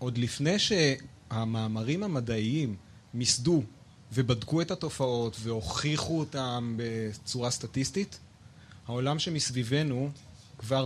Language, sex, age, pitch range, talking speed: Hebrew, male, 30-49, 120-150 Hz, 85 wpm